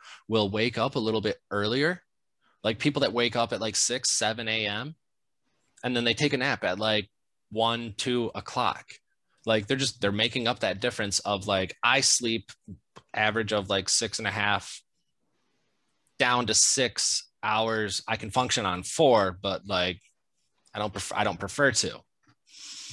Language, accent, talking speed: English, American, 170 wpm